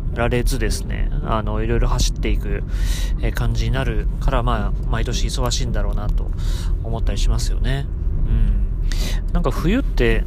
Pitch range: 100-130 Hz